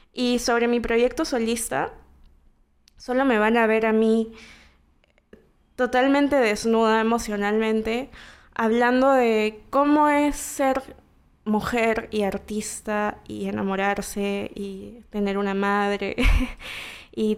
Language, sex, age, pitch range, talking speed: Spanish, female, 20-39, 200-235 Hz, 105 wpm